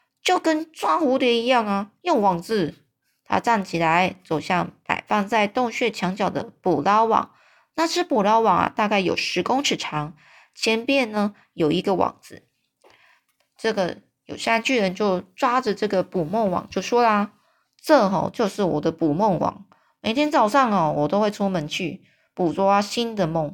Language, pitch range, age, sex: Chinese, 175-230 Hz, 20-39, female